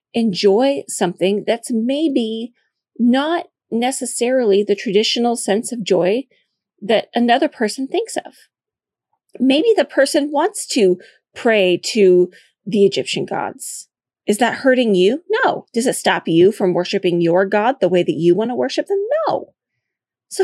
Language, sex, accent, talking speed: English, female, American, 145 wpm